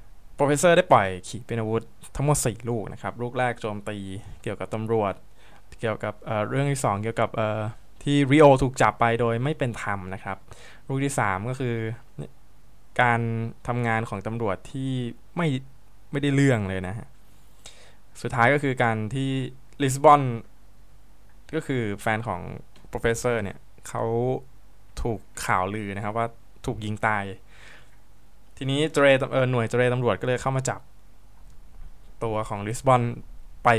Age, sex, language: 20-39, male, Thai